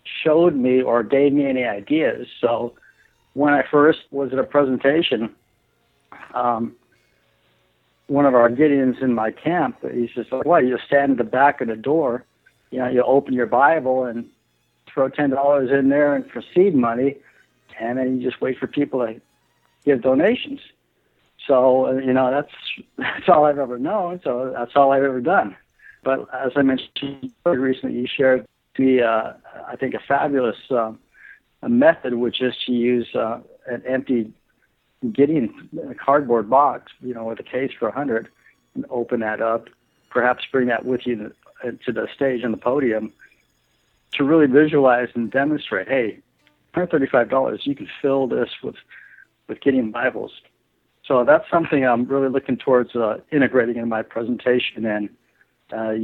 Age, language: 60-79, English